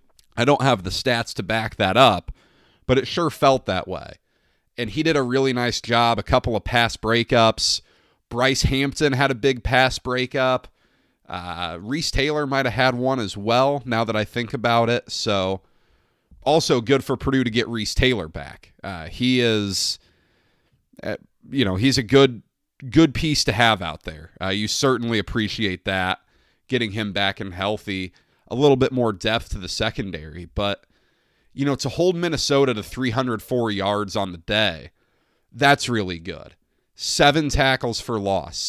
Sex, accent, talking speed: male, American, 170 wpm